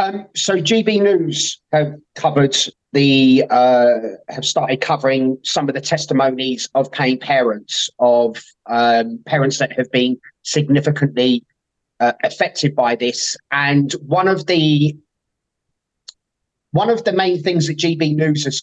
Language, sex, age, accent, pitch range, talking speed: English, male, 30-49, British, 145-190 Hz, 135 wpm